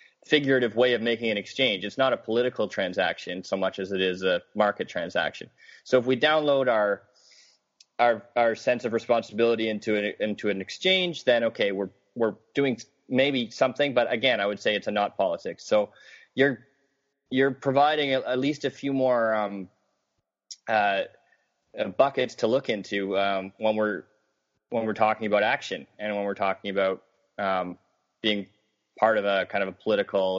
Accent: American